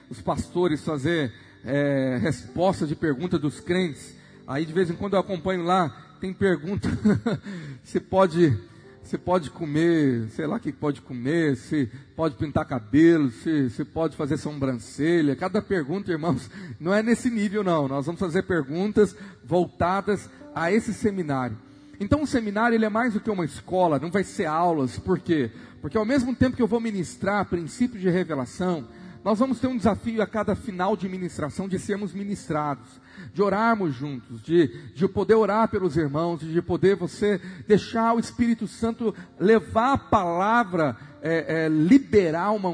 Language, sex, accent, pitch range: Portuguese, male, Brazilian, 145-200 Hz